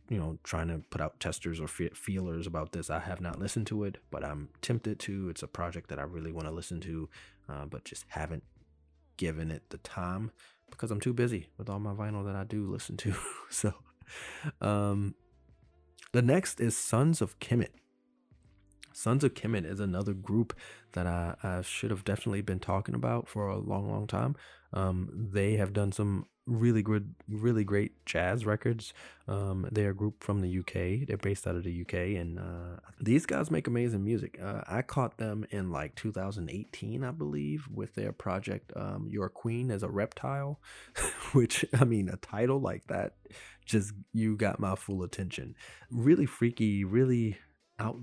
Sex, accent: male, American